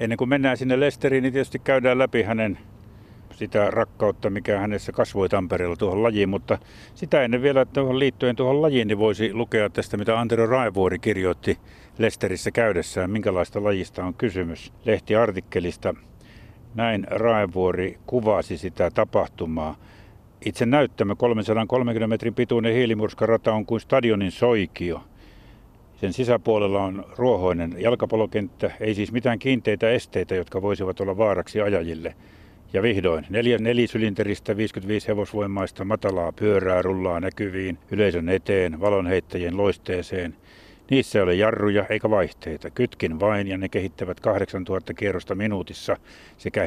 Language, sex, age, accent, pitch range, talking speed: Finnish, male, 60-79, native, 95-115 Hz, 130 wpm